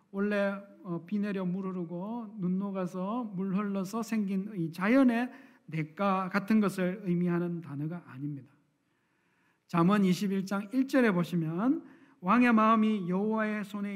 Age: 40-59